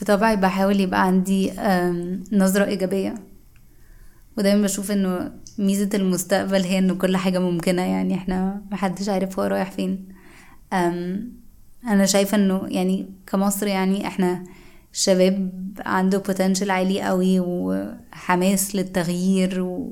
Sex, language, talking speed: female, Arabic, 110 wpm